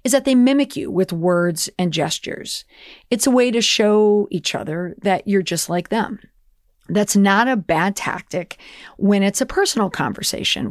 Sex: female